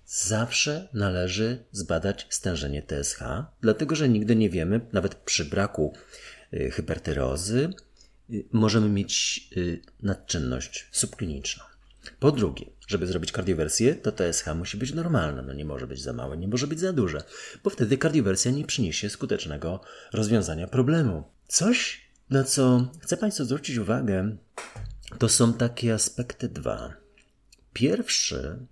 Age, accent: 40-59, native